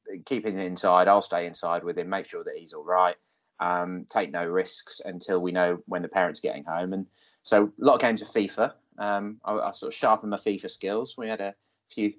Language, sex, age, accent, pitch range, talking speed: English, male, 20-39, British, 95-115 Hz, 225 wpm